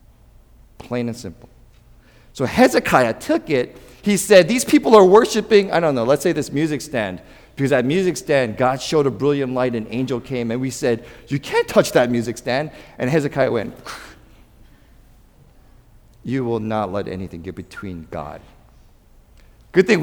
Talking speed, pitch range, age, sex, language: 165 wpm, 130-195 Hz, 50-69, male, English